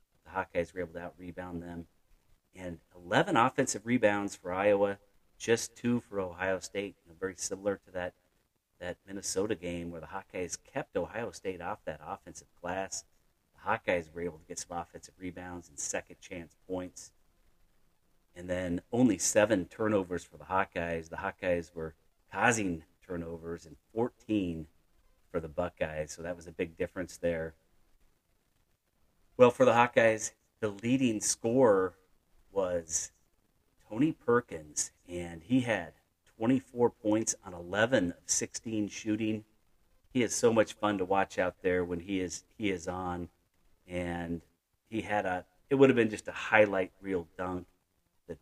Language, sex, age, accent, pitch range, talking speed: English, male, 40-59, American, 85-100 Hz, 150 wpm